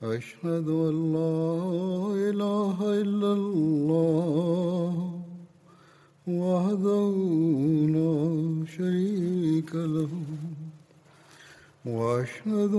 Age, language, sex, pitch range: 60-79, Bulgarian, male, 155-200 Hz